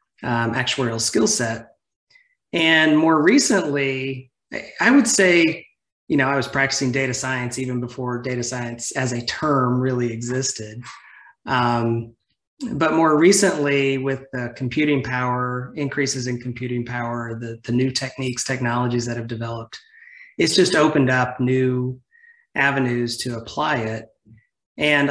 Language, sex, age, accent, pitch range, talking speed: English, male, 30-49, American, 120-145 Hz, 135 wpm